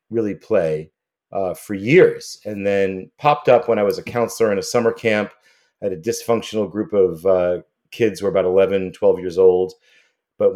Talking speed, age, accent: 190 wpm, 40-59, American